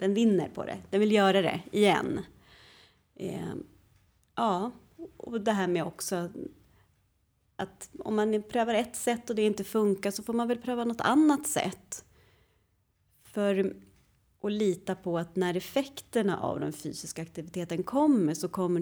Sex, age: female, 30-49